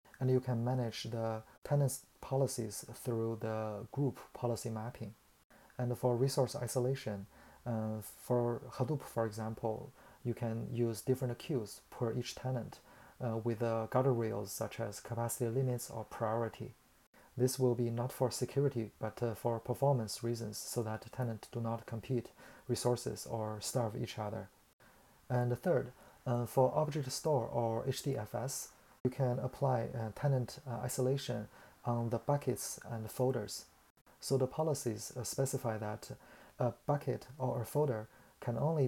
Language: Chinese